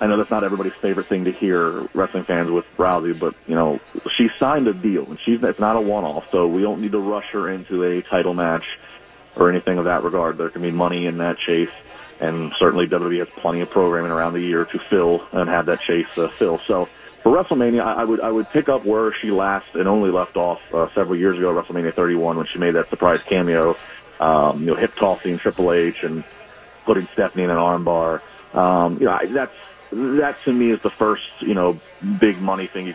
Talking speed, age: 225 wpm, 30-49